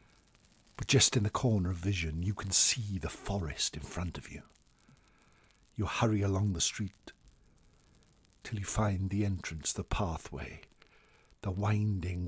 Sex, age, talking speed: male, 60-79, 145 wpm